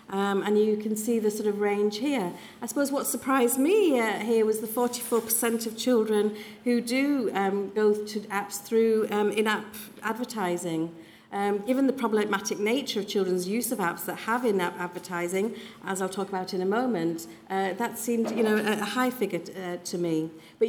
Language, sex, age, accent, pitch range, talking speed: English, female, 40-59, British, 180-225 Hz, 190 wpm